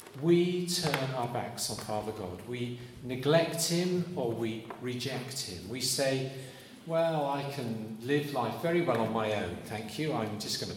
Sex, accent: male, British